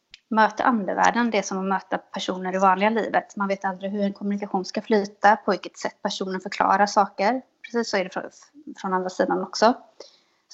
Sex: female